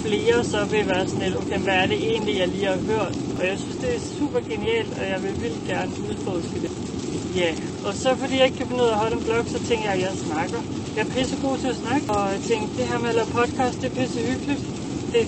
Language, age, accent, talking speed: Danish, 30-49, native, 265 wpm